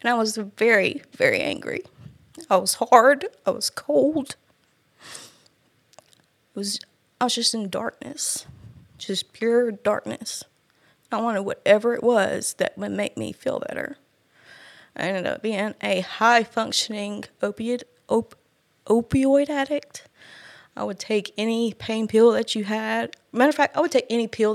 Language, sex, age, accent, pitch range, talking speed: English, female, 20-39, American, 180-230 Hz, 150 wpm